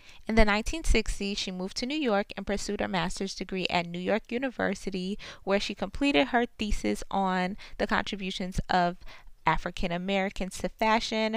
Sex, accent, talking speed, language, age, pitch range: female, American, 160 wpm, English, 20-39, 175-200 Hz